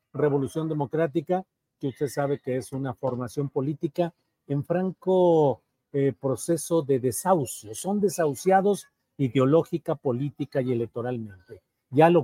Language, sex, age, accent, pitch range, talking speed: Spanish, male, 50-69, Mexican, 135-180 Hz, 120 wpm